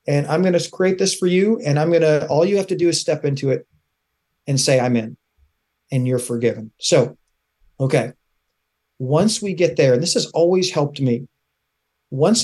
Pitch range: 130-170 Hz